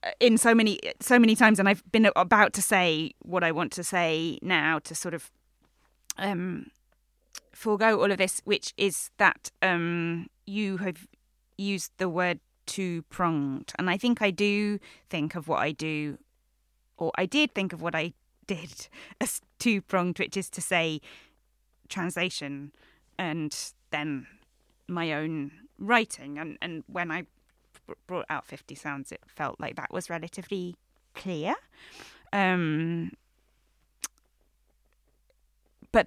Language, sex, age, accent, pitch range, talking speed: English, female, 20-39, British, 155-200 Hz, 140 wpm